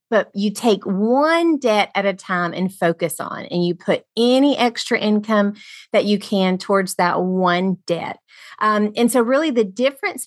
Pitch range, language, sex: 180-225 Hz, English, female